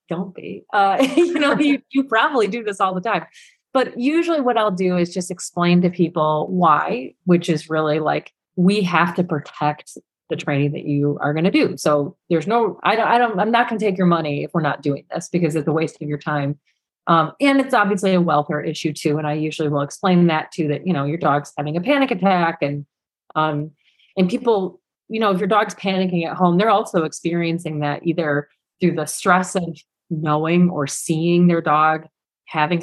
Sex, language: female, English